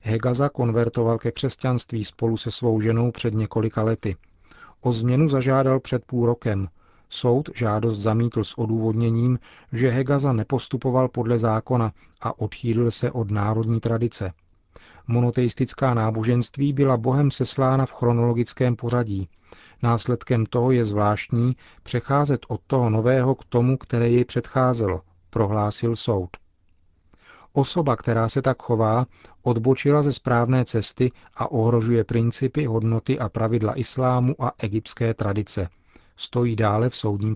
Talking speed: 125 wpm